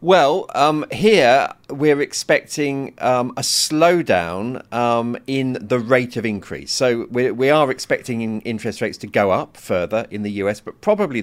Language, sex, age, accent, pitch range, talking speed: English, male, 40-59, British, 100-130 Hz, 160 wpm